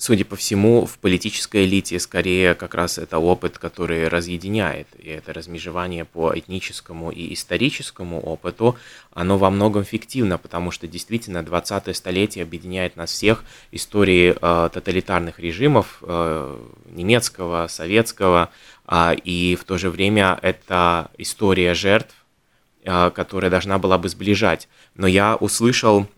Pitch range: 90-110 Hz